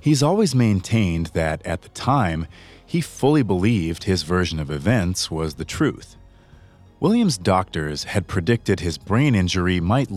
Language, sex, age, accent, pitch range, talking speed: English, male, 30-49, American, 85-110 Hz, 150 wpm